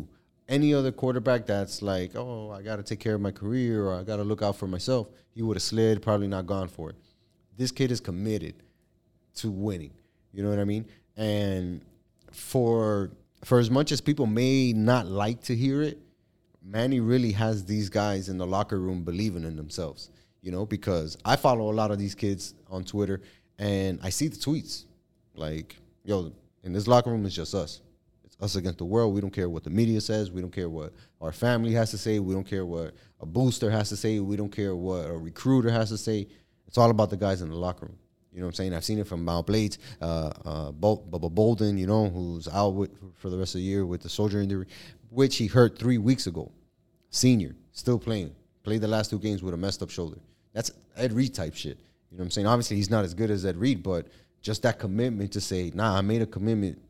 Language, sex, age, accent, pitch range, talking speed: English, male, 30-49, American, 95-115 Hz, 230 wpm